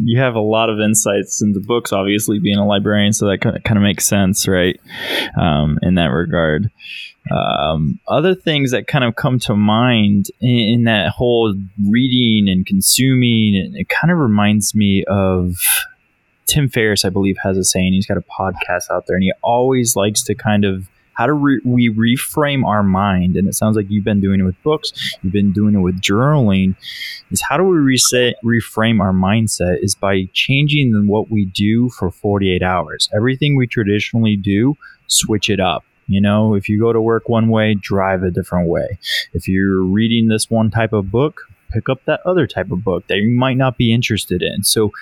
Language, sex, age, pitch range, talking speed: English, male, 20-39, 95-120 Hz, 200 wpm